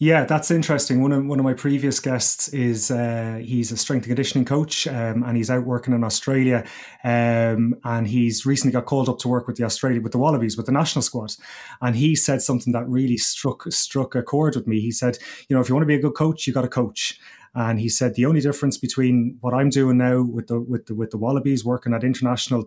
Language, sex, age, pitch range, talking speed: English, male, 30-49, 120-135 Hz, 245 wpm